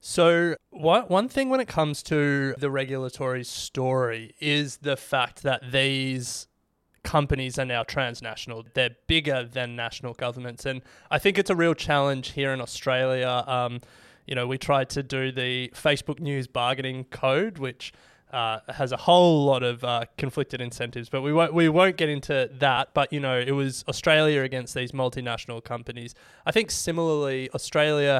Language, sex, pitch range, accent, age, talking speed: English, male, 125-145 Hz, Australian, 20-39, 165 wpm